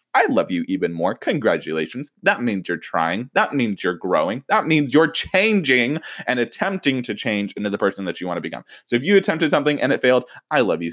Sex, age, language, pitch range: male, 20-39, English, 110-170 Hz